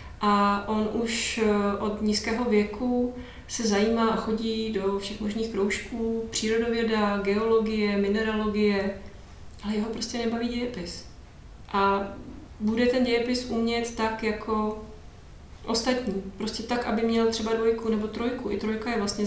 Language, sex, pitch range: Czech, female, 205-230 Hz